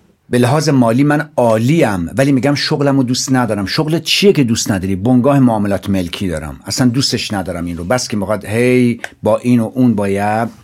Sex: male